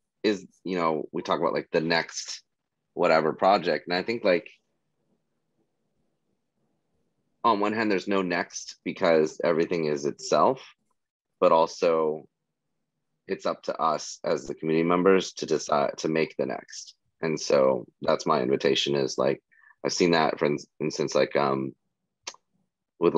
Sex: male